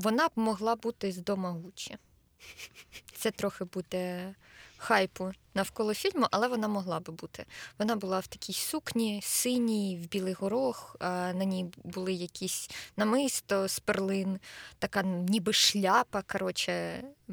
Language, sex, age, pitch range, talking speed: Ukrainian, female, 20-39, 180-220 Hz, 130 wpm